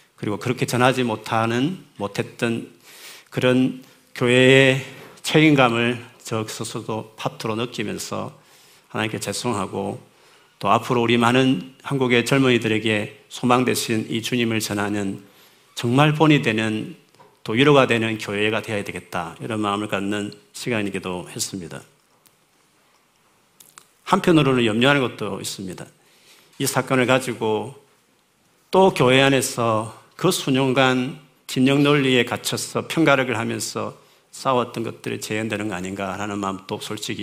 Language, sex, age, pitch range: Korean, male, 40-59, 110-135 Hz